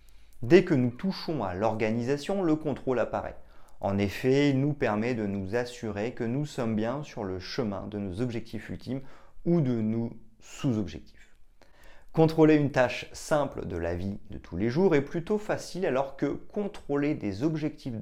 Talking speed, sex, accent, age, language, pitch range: 170 wpm, male, French, 40-59, French, 95-135 Hz